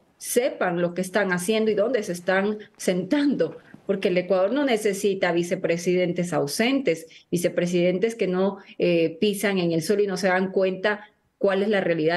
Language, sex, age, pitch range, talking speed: English, female, 30-49, 185-235 Hz, 170 wpm